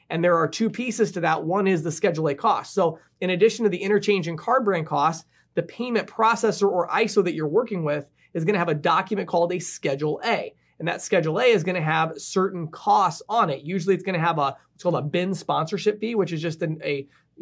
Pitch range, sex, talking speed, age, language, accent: 160-195 Hz, male, 245 wpm, 20-39, English, American